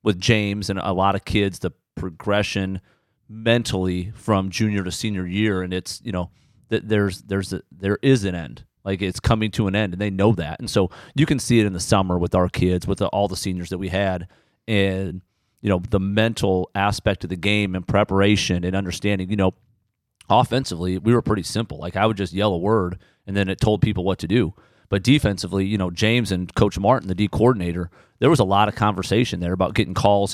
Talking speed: 220 wpm